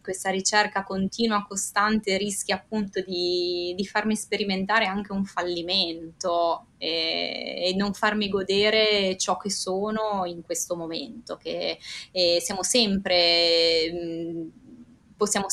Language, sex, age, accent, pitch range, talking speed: Italian, female, 20-39, native, 180-205 Hz, 110 wpm